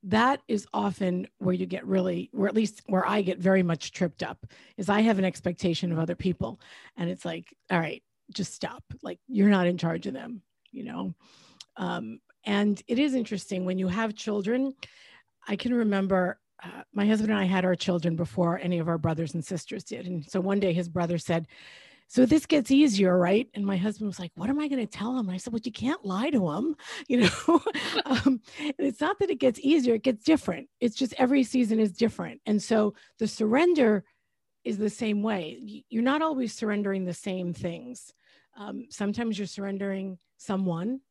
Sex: female